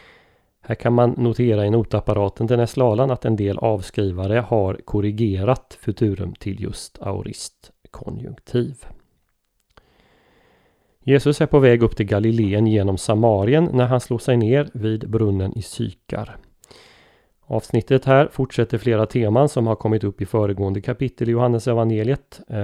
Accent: native